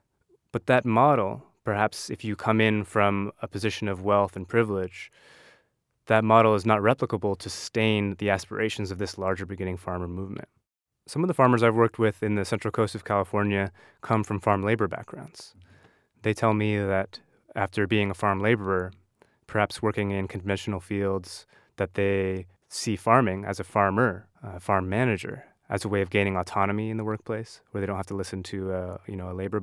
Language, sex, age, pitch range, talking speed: English, male, 20-39, 95-110 Hz, 185 wpm